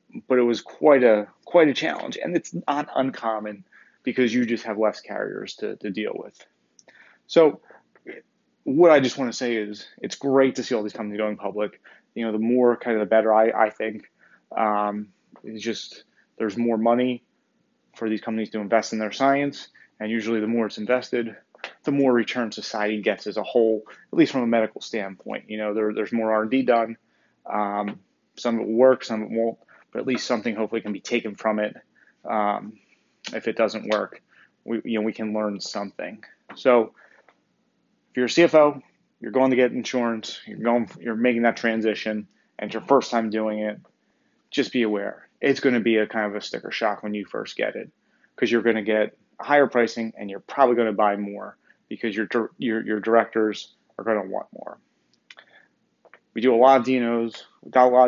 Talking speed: 205 wpm